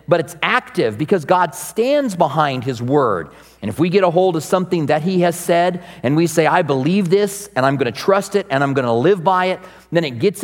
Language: English